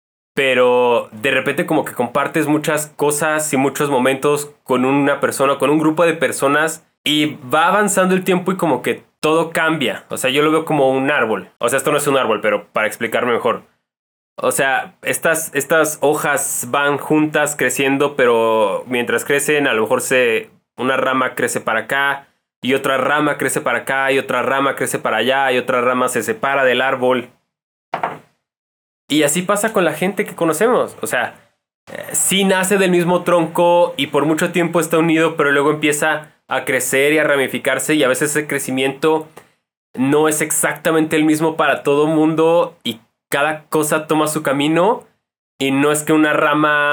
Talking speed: 185 wpm